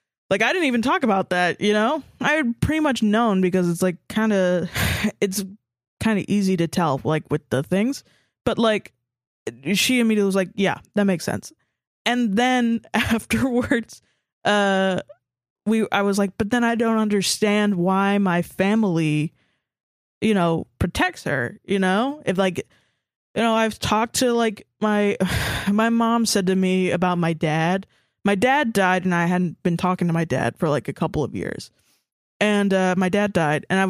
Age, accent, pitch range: 20-39, American, 175-220 Hz